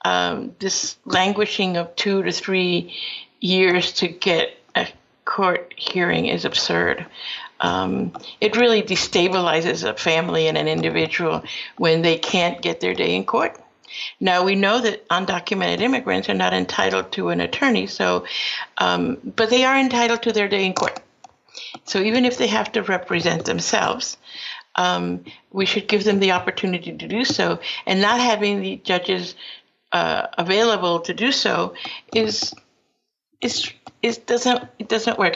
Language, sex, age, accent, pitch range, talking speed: English, female, 50-69, American, 165-215 Hz, 155 wpm